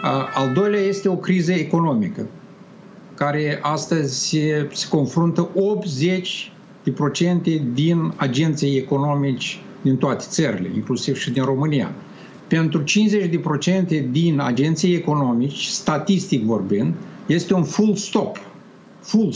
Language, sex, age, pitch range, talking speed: Romanian, male, 50-69, 145-190 Hz, 105 wpm